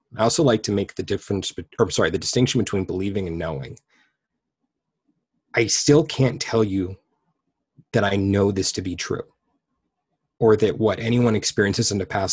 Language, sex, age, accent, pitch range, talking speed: English, male, 30-49, American, 95-120 Hz, 175 wpm